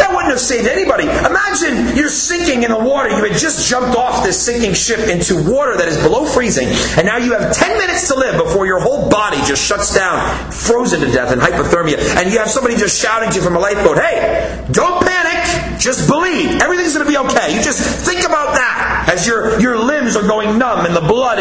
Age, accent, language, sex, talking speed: 30-49, American, English, male, 220 wpm